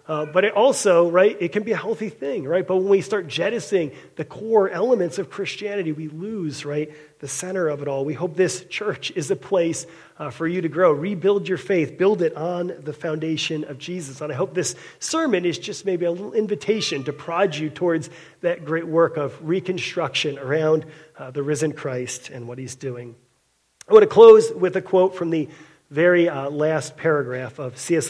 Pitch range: 150-185 Hz